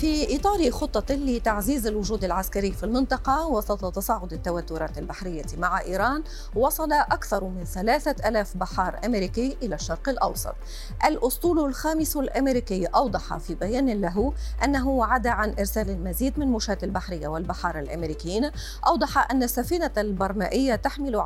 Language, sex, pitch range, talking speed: Arabic, female, 195-275 Hz, 125 wpm